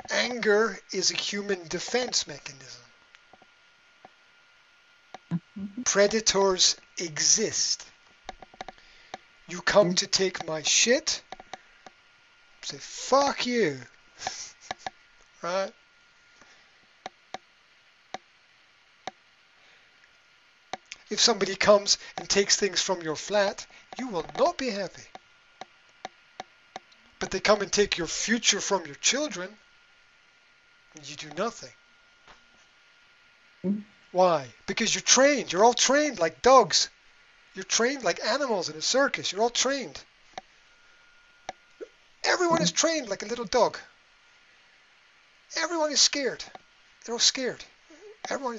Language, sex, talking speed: English, male, 95 wpm